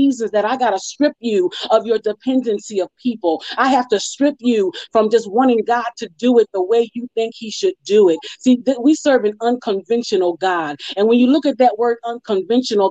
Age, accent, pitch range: 40-59, American, 215-265 Hz